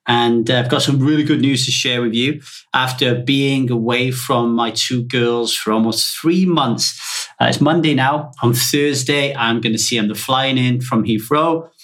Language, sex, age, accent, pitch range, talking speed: English, male, 30-49, British, 115-160 Hz, 200 wpm